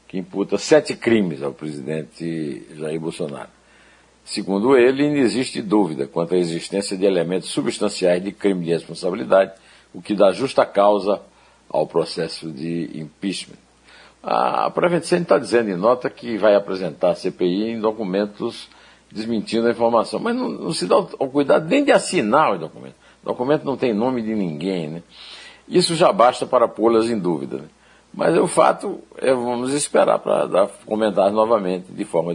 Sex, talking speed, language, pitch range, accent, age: male, 160 wpm, Portuguese, 85-110 Hz, Brazilian, 60-79